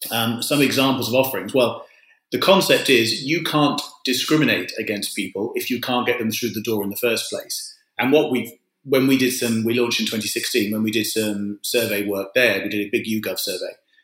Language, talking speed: English, 210 wpm